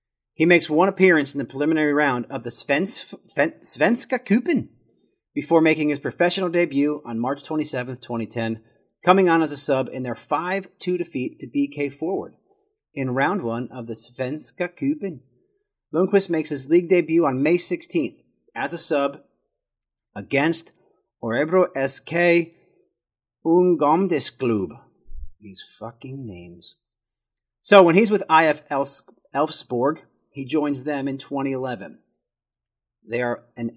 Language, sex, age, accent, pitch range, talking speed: English, male, 40-59, American, 125-170 Hz, 130 wpm